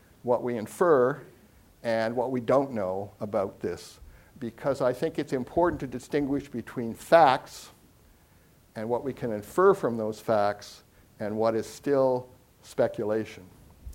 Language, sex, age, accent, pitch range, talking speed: English, male, 60-79, American, 110-145 Hz, 140 wpm